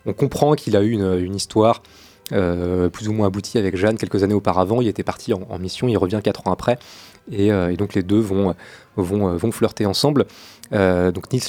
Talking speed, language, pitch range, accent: 225 wpm, French, 95-115 Hz, French